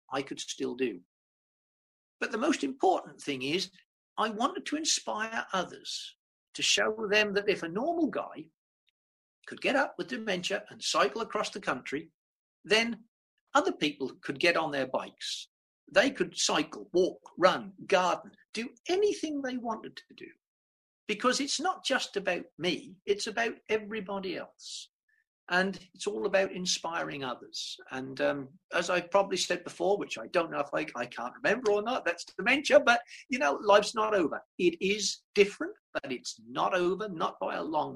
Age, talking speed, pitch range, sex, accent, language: 50-69, 170 wpm, 180-275 Hz, male, British, English